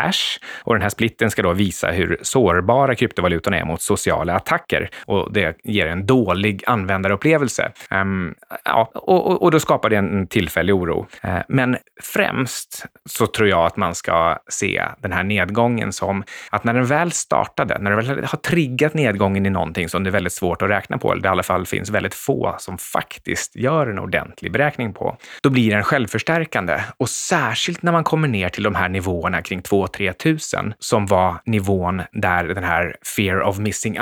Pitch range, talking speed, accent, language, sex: 95-130 Hz, 190 wpm, native, Swedish, male